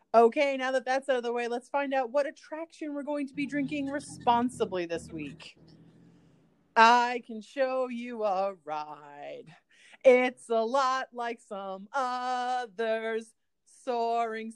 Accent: American